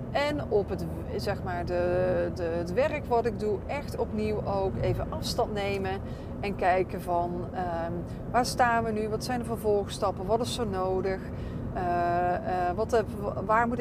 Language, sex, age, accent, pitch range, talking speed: Dutch, female, 30-49, Dutch, 185-225 Hz, 170 wpm